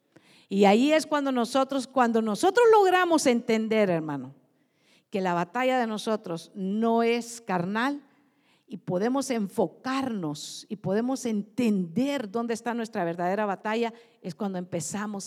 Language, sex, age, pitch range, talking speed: Spanish, female, 50-69, 190-270 Hz, 125 wpm